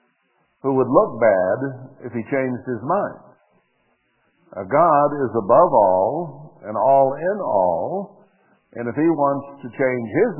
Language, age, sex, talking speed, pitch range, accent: English, 60-79, male, 140 wpm, 115-140 Hz, American